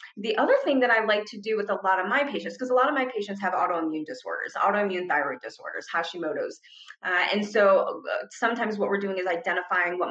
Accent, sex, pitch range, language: American, female, 185-255 Hz, English